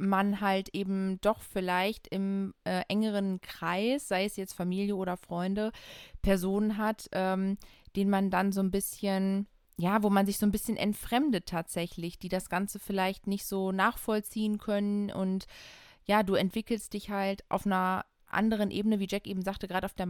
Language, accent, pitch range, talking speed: German, German, 185-210 Hz, 175 wpm